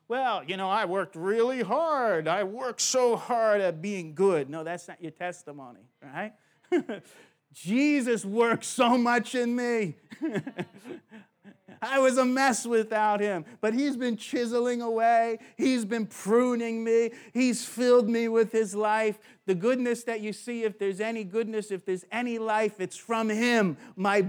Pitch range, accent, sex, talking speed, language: 155-230 Hz, American, male, 160 wpm, English